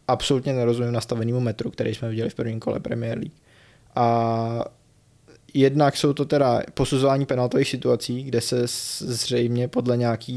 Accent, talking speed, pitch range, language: native, 145 wpm, 115-130 Hz, Czech